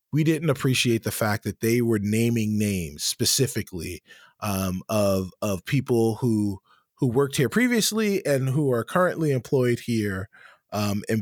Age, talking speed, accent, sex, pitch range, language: 20-39, 150 wpm, American, male, 105-130 Hz, English